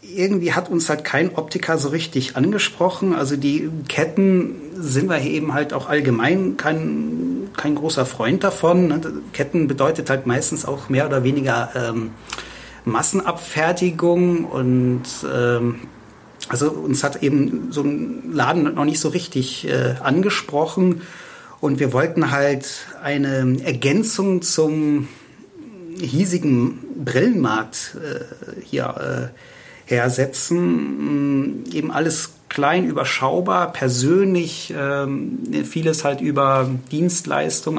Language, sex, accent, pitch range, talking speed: German, male, German, 135-165 Hz, 115 wpm